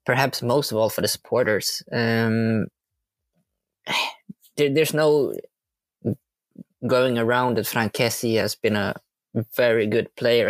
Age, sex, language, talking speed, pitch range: 20-39, male, English, 120 wpm, 115-150 Hz